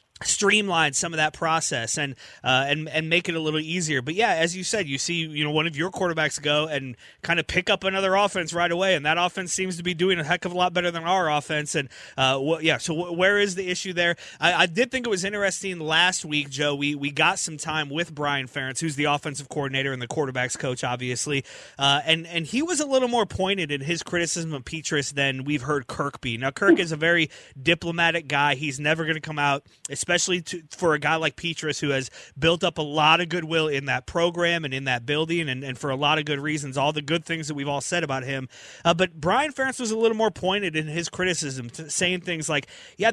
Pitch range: 145-180 Hz